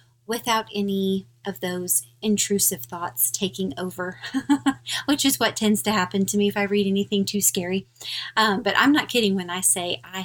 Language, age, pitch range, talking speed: English, 30-49, 175-205 Hz, 180 wpm